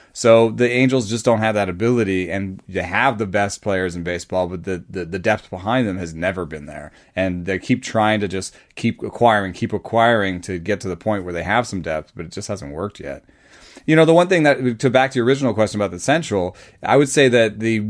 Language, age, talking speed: English, 30-49, 245 wpm